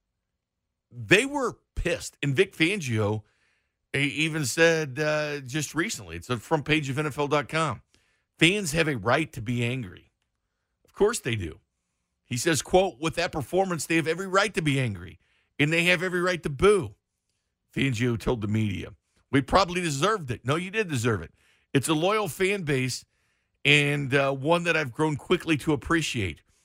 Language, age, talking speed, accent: English, 50-69, 170 wpm, American